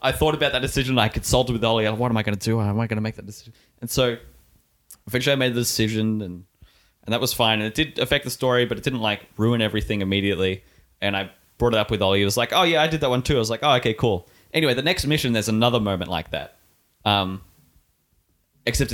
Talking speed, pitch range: 260 wpm, 95-125 Hz